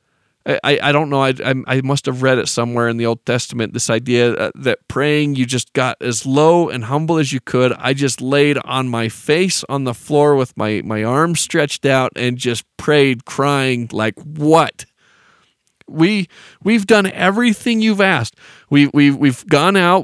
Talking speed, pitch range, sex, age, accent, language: 185 wpm, 125-175 Hz, male, 40-59, American, English